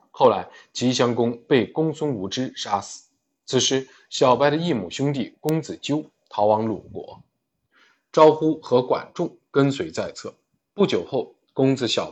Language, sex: Chinese, male